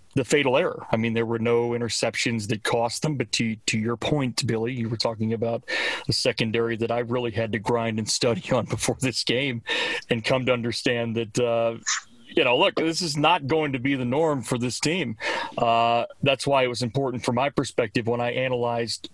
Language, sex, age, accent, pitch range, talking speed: English, male, 40-59, American, 115-140 Hz, 215 wpm